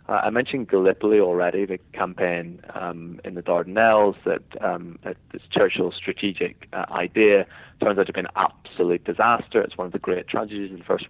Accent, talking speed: British, 190 wpm